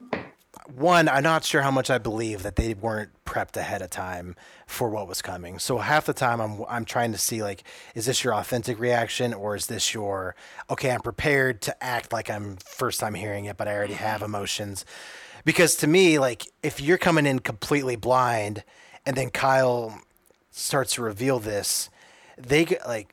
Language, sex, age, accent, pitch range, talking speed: English, male, 30-49, American, 105-135 Hz, 190 wpm